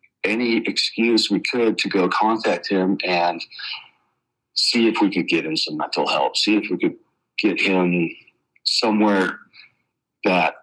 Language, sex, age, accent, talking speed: English, male, 40-59, American, 145 wpm